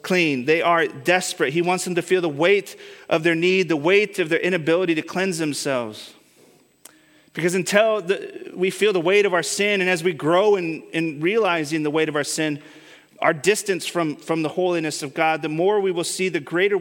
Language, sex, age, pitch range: English, male, 30-49, 160-200 Hz